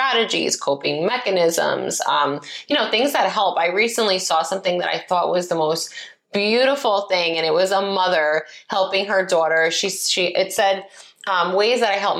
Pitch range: 165-205 Hz